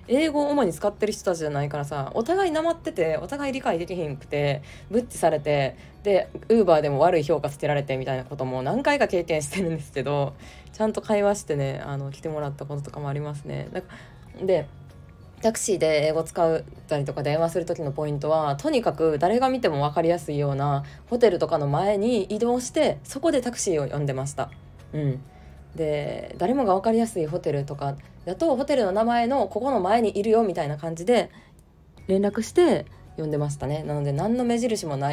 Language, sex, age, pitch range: Japanese, female, 20-39, 145-215 Hz